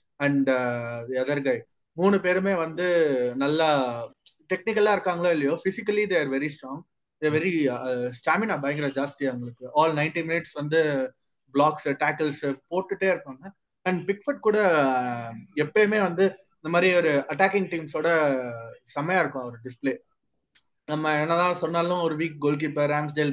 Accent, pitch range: native, 140-185 Hz